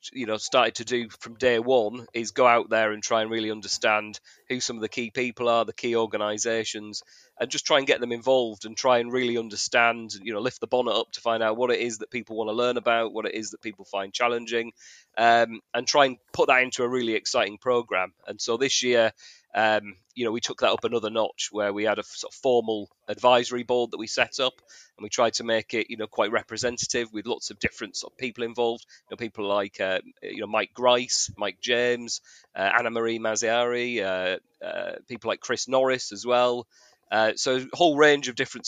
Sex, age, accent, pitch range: male, 30-49, British, 110-125 Hz